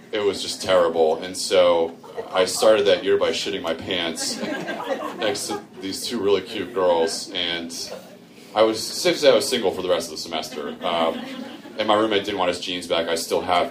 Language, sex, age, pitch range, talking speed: English, male, 30-49, 80-115 Hz, 195 wpm